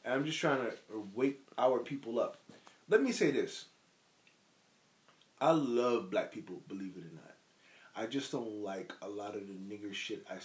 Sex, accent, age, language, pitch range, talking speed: male, American, 30-49, English, 105-130 Hz, 180 wpm